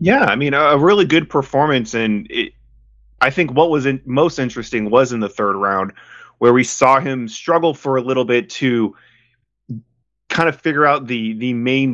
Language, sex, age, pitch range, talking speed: English, male, 20-39, 105-130 Hz, 190 wpm